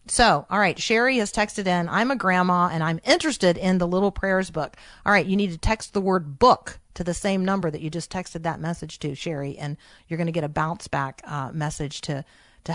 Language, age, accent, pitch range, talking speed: English, 40-59, American, 170-215 Hz, 240 wpm